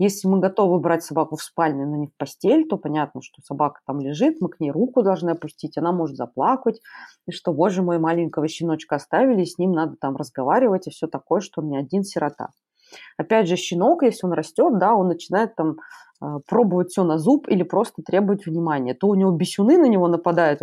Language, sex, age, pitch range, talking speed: Russian, female, 20-39, 155-205 Hz, 210 wpm